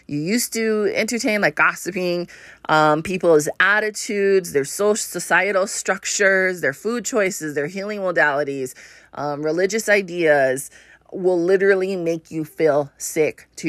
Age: 30-49